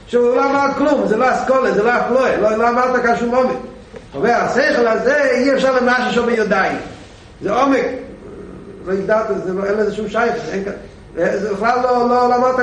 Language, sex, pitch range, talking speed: Hebrew, male, 160-240 Hz, 165 wpm